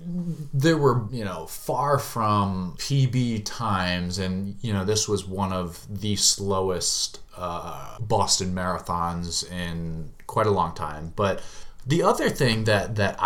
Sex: male